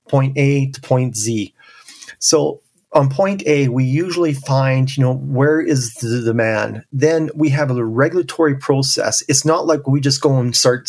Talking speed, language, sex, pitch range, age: 175 wpm, English, male, 130-155 Hz, 40-59